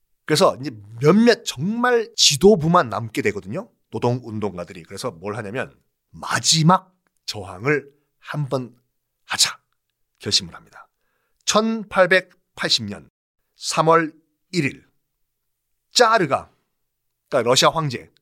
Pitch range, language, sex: 130-210 Hz, Korean, male